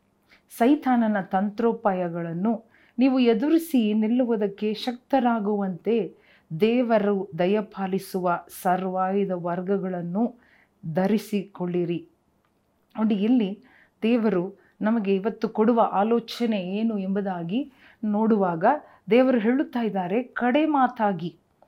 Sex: female